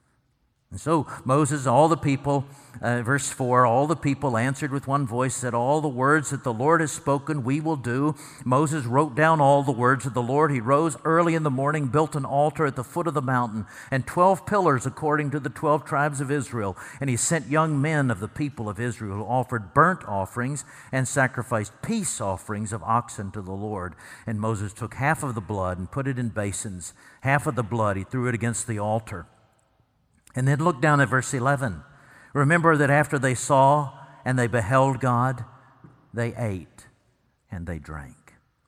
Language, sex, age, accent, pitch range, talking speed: English, male, 50-69, American, 115-145 Hz, 200 wpm